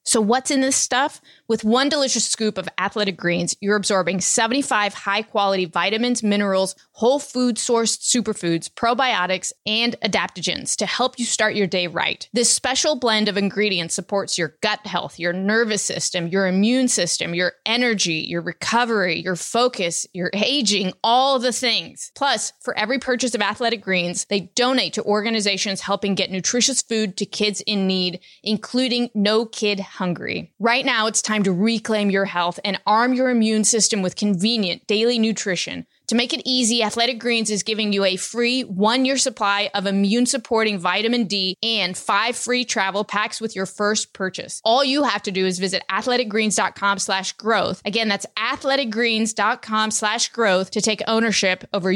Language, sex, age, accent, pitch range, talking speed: English, female, 20-39, American, 195-235 Hz, 165 wpm